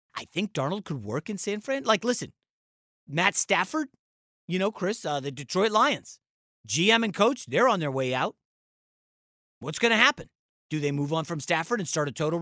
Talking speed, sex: 200 wpm, male